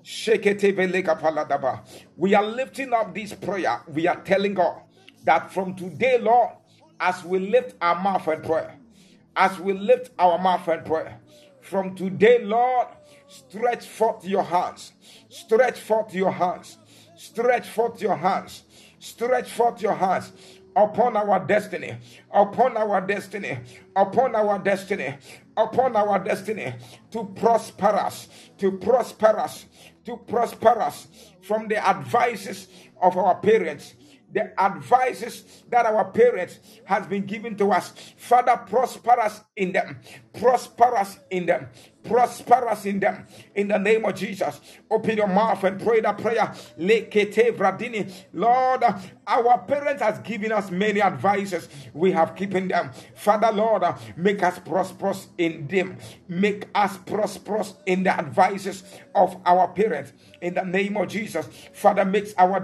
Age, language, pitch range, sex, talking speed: 50-69, English, 185-220 Hz, male, 145 wpm